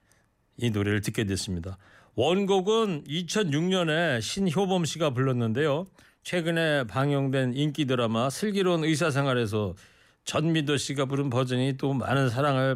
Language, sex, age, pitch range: Korean, male, 40-59, 125-170 Hz